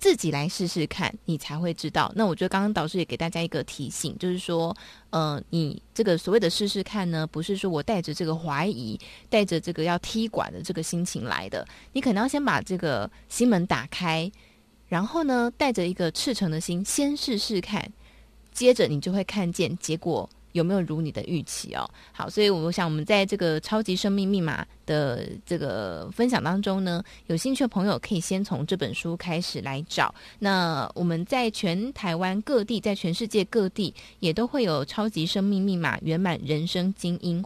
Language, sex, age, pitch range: Chinese, female, 20-39, 165-205 Hz